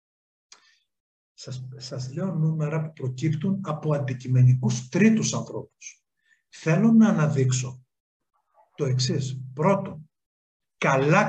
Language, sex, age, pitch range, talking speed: Greek, male, 50-69, 135-195 Hz, 85 wpm